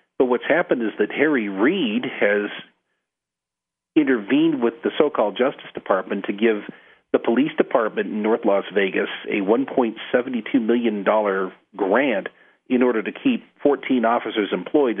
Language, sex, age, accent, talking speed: English, male, 40-59, American, 135 wpm